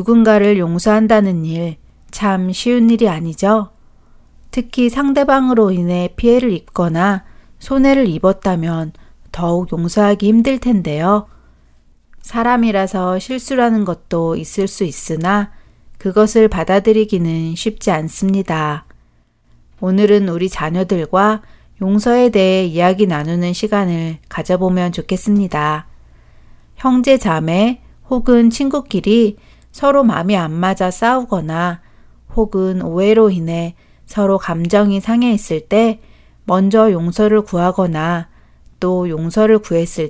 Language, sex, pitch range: Korean, female, 170-220 Hz